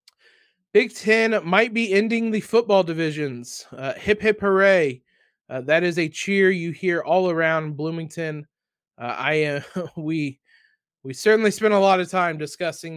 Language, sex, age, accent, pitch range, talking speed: English, male, 20-39, American, 145-190 Hz, 155 wpm